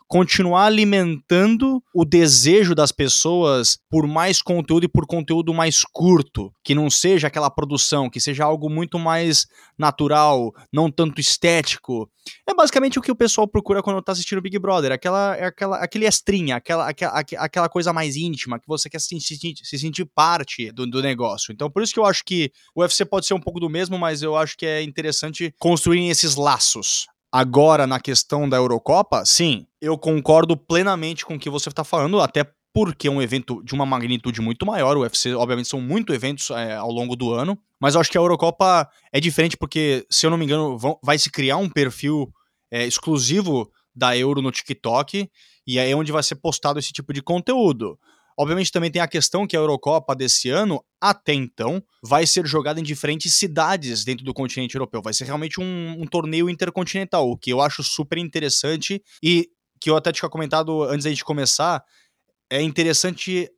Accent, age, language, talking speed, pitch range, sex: Brazilian, 20-39, Portuguese, 190 wpm, 140-175 Hz, male